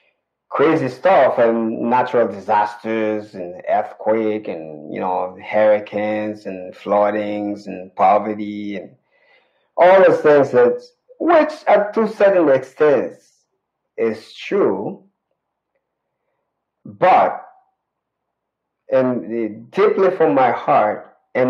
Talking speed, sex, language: 95 wpm, male, English